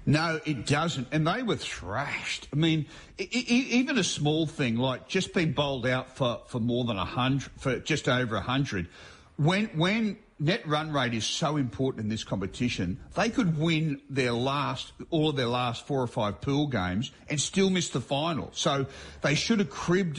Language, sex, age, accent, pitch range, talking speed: English, male, 50-69, Australian, 115-155 Hz, 185 wpm